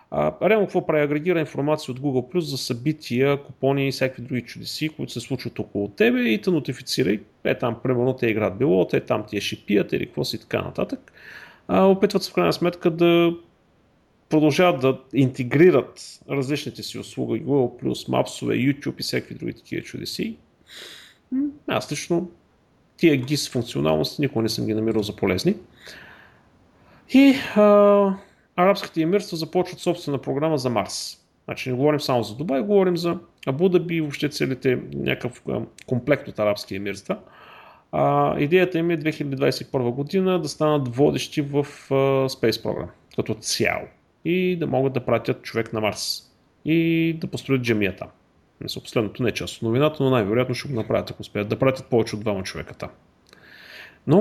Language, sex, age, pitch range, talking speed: Bulgarian, male, 40-59, 120-170 Hz, 160 wpm